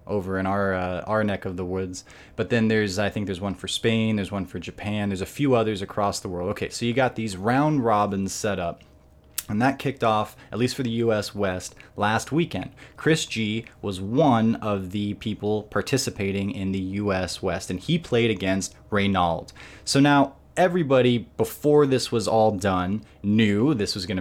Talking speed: 195 wpm